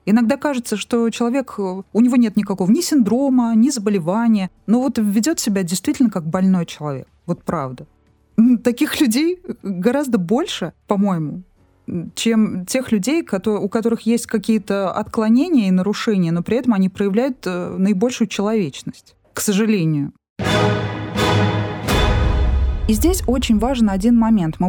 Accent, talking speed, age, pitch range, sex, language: native, 130 wpm, 20-39, 175-235 Hz, female, Russian